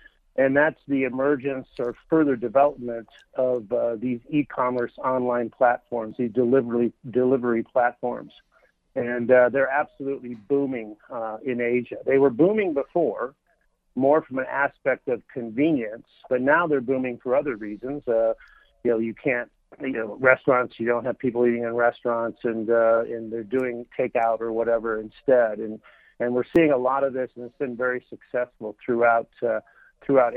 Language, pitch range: English, 115-135 Hz